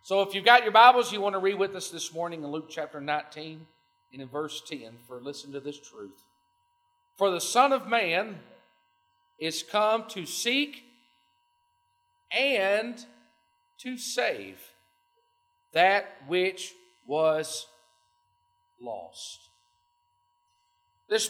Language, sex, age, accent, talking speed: English, male, 50-69, American, 125 wpm